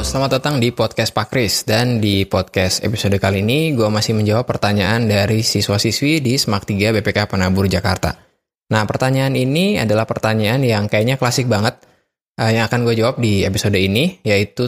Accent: native